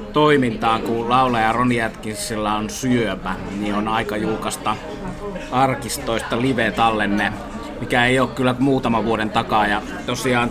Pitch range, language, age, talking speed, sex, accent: 110-130 Hz, Finnish, 30-49, 125 wpm, male, native